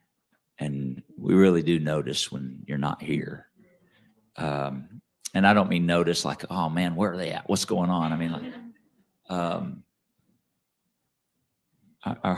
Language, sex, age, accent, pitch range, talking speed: English, male, 50-69, American, 80-95 Hz, 150 wpm